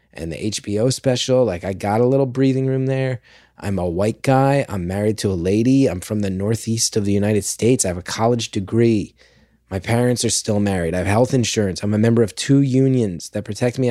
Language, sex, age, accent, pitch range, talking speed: English, male, 20-39, American, 100-120 Hz, 225 wpm